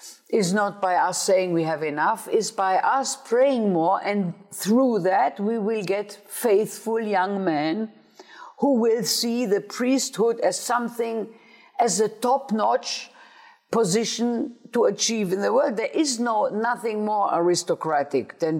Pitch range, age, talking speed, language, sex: 185-250 Hz, 50-69, 145 wpm, English, female